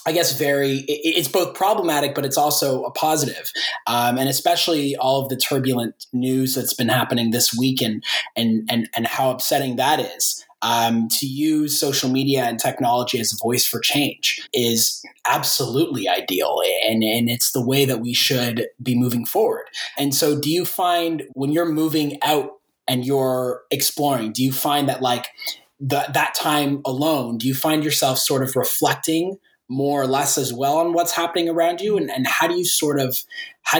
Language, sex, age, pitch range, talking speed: English, male, 20-39, 125-150 Hz, 185 wpm